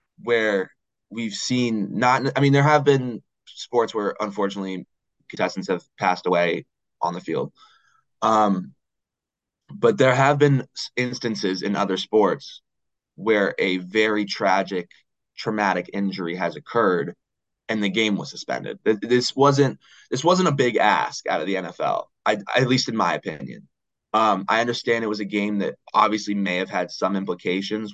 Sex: male